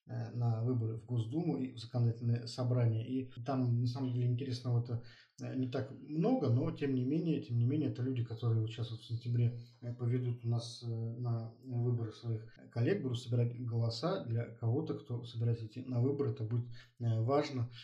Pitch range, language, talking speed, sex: 115-130 Hz, Russian, 165 wpm, male